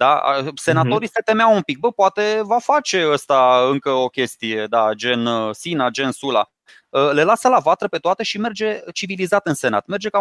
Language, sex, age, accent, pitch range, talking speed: Romanian, male, 20-39, native, 145-225 Hz, 190 wpm